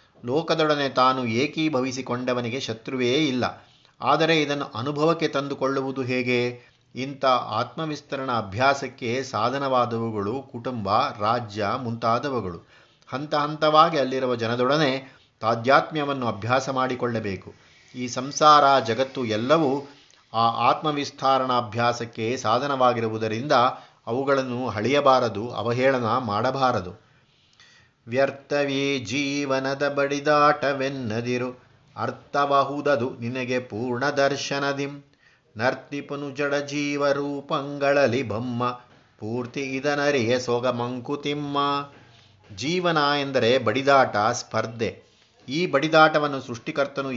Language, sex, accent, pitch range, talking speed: Kannada, male, native, 120-145 Hz, 70 wpm